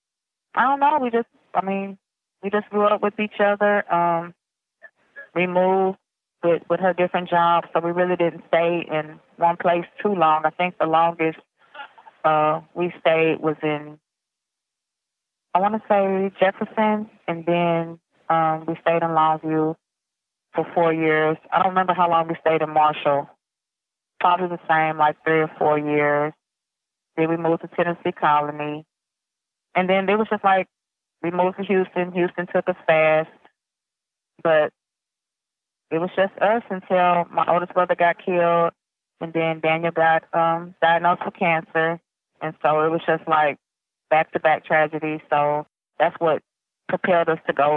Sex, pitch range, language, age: female, 155-180 Hz, English, 30-49